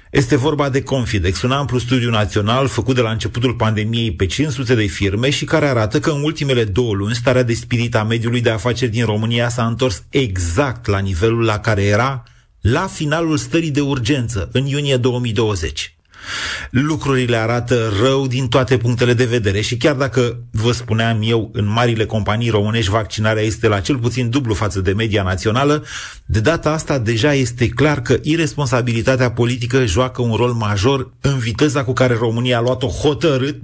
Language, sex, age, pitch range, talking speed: Romanian, male, 40-59, 110-135 Hz, 175 wpm